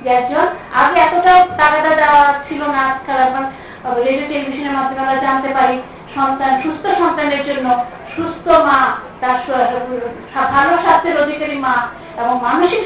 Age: 50-69